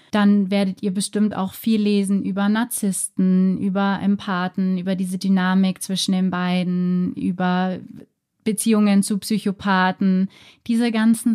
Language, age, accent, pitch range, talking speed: German, 20-39, German, 190-210 Hz, 120 wpm